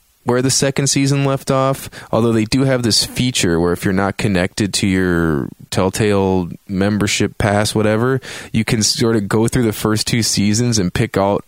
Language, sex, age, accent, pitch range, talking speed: English, male, 20-39, American, 90-115 Hz, 190 wpm